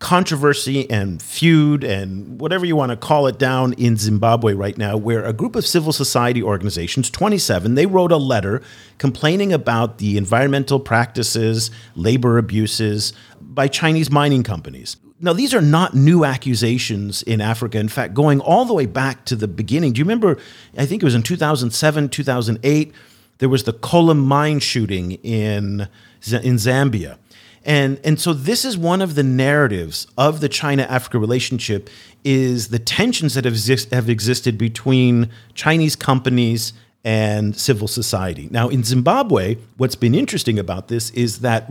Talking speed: 165 wpm